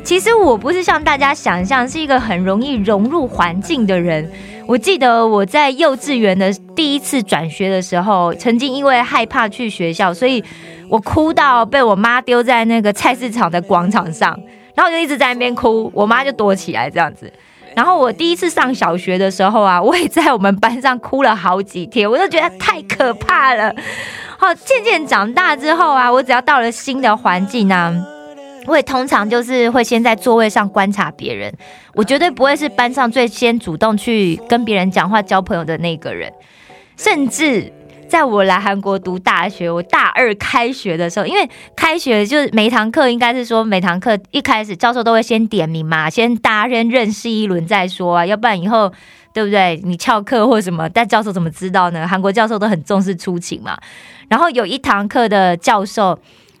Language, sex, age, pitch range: Korean, female, 20-39, 190-260 Hz